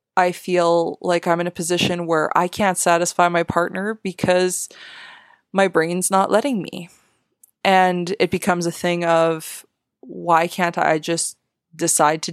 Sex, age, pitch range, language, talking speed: female, 20-39, 165-190 Hz, English, 150 wpm